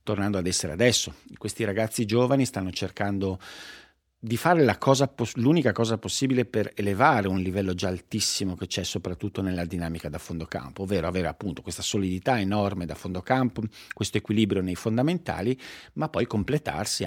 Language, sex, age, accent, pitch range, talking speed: Italian, male, 50-69, native, 90-115 Hz, 160 wpm